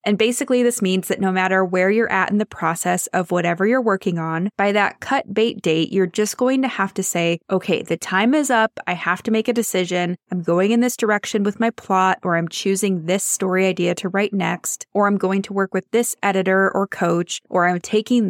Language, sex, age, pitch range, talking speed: English, female, 20-39, 180-220 Hz, 235 wpm